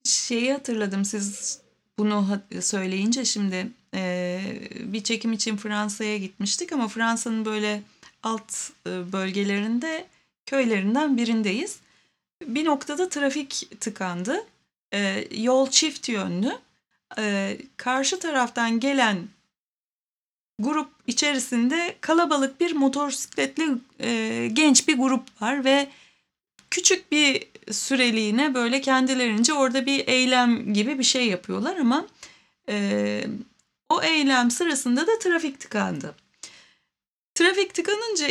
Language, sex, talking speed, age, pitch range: Turkish, female, 95 wpm, 30-49, 215-290 Hz